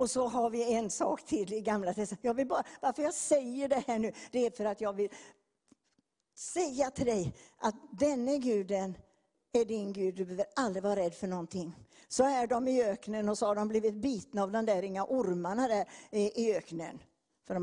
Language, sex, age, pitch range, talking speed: English, female, 60-79, 205-260 Hz, 210 wpm